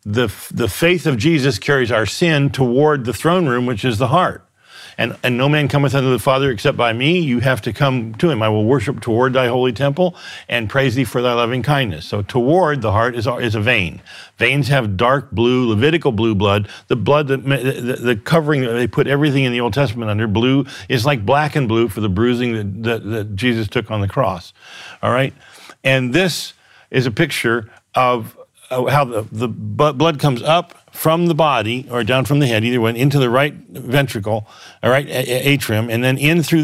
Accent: American